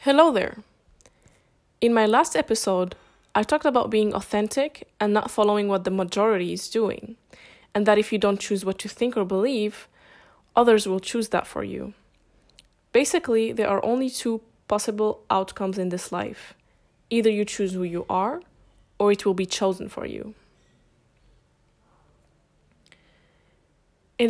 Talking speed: 150 wpm